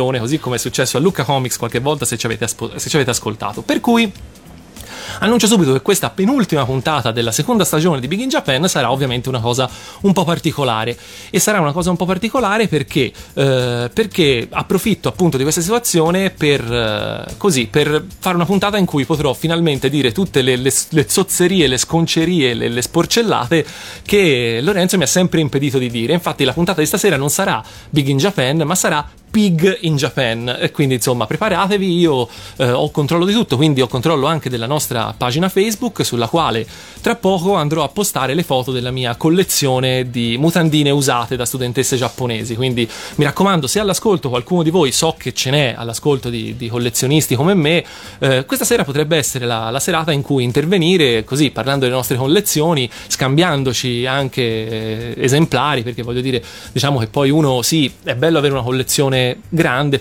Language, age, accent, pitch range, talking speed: Italian, 30-49, native, 125-170 Hz, 185 wpm